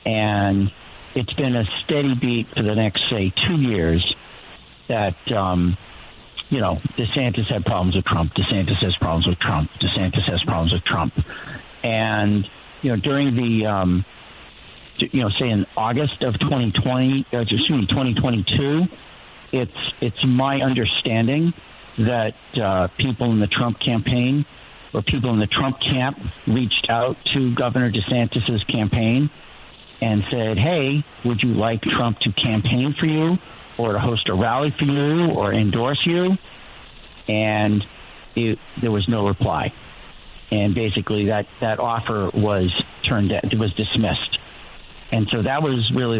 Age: 60-79